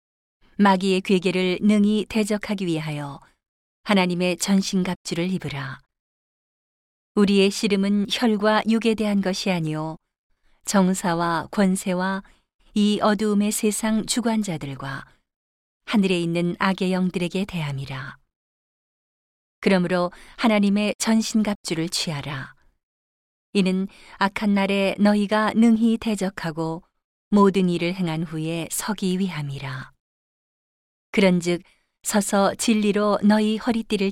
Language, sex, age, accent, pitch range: Korean, female, 40-59, native, 170-210 Hz